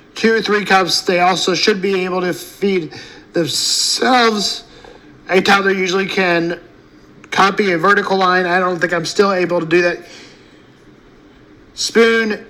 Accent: American